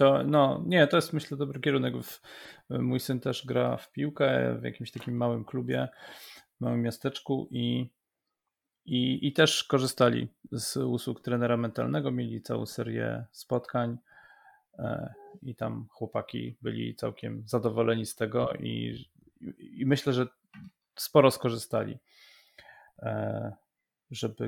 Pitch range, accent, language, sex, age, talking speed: 115-135 Hz, native, Polish, male, 30-49, 125 wpm